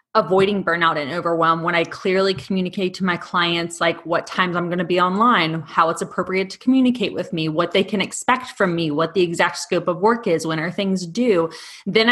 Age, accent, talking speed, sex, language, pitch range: 20-39, American, 220 wpm, female, English, 170-200 Hz